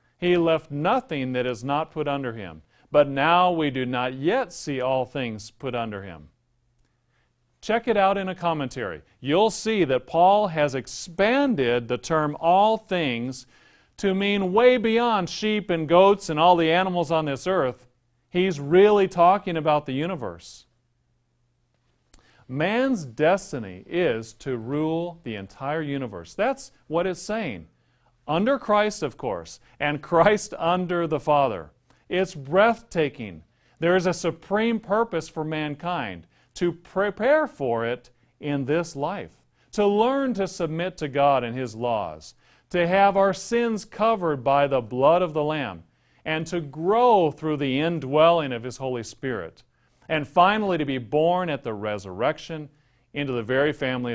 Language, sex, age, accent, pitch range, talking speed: English, male, 40-59, American, 125-185 Hz, 150 wpm